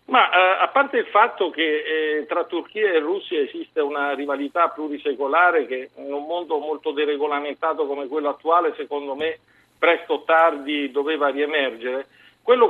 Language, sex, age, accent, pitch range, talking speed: Italian, male, 50-69, native, 145-180 Hz, 155 wpm